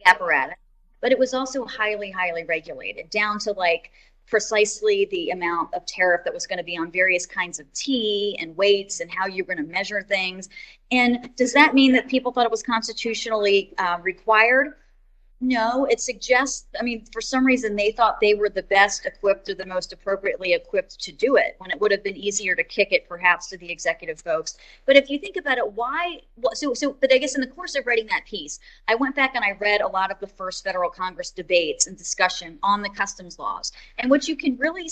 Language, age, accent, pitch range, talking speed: English, 30-49, American, 195-260 Hz, 225 wpm